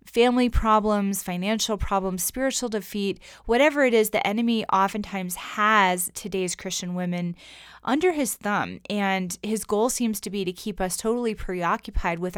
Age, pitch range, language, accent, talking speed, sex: 20-39, 180-220 Hz, English, American, 150 wpm, female